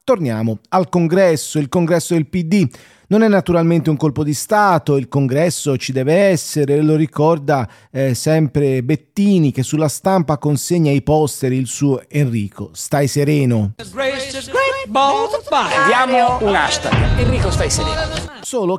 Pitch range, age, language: 130-175 Hz, 40-59, Italian